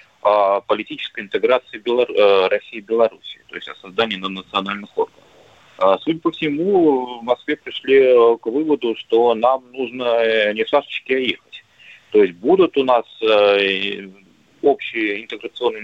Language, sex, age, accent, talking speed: Russian, male, 30-49, native, 125 wpm